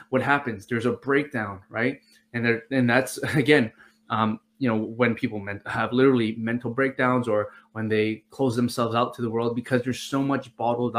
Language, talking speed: English, 185 wpm